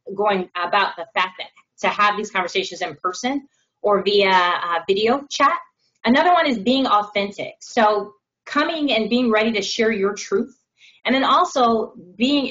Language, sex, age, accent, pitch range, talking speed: English, female, 20-39, American, 190-230 Hz, 165 wpm